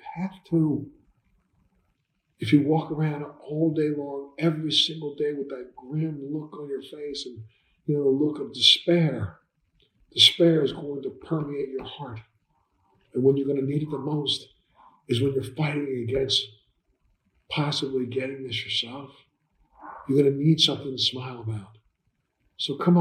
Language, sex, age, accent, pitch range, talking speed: English, male, 50-69, American, 115-145 Hz, 160 wpm